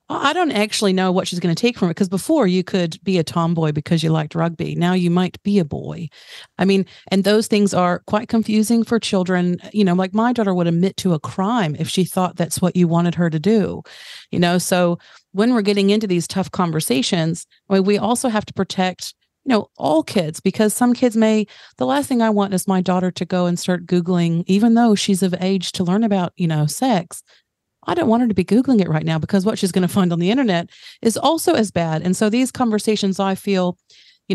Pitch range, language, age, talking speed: 175-210 Hz, English, 40-59, 235 wpm